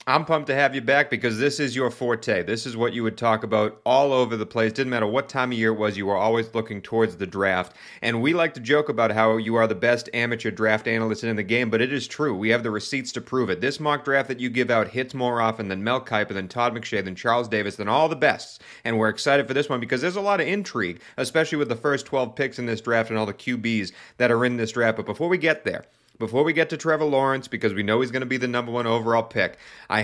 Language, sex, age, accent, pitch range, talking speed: English, male, 30-49, American, 110-140 Hz, 285 wpm